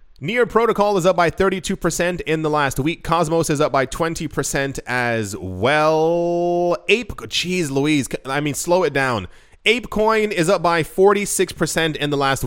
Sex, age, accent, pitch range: male, 20-39, American, 135-185 Hz